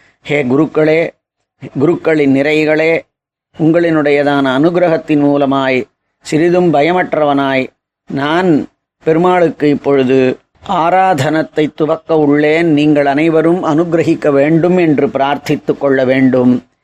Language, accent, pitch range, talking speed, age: Tamil, native, 140-160 Hz, 80 wpm, 30-49